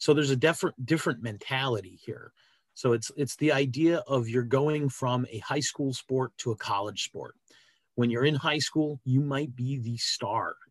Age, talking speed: 30-49, 190 wpm